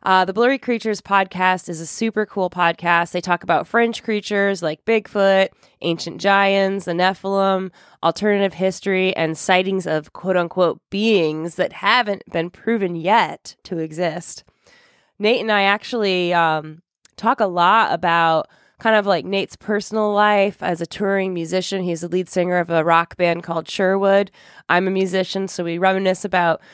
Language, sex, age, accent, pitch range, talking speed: English, female, 20-39, American, 175-200 Hz, 160 wpm